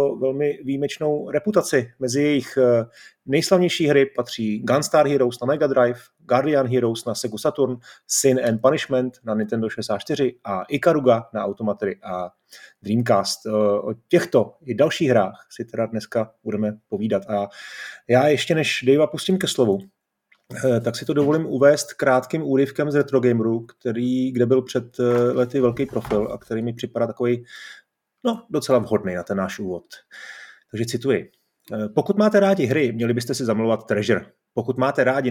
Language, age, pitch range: Czech, 30-49, 115-145 Hz